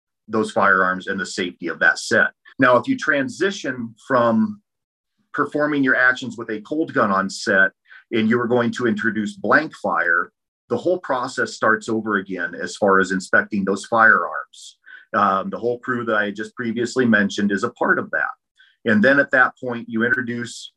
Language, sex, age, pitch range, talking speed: English, male, 40-59, 105-120 Hz, 180 wpm